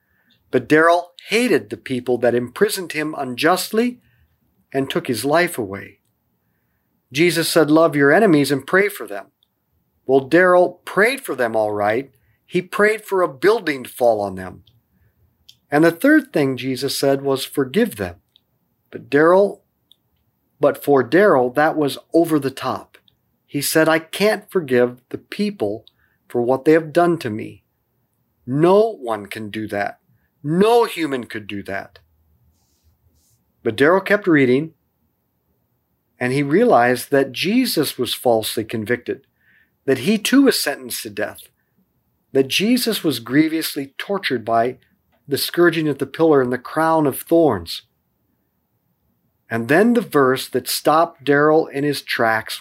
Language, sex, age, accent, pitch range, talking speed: English, male, 50-69, American, 115-170 Hz, 145 wpm